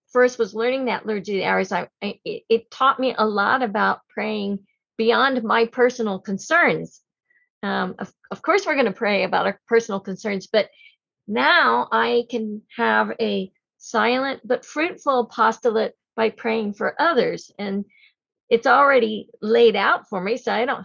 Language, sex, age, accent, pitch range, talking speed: English, female, 50-69, American, 205-250 Hz, 155 wpm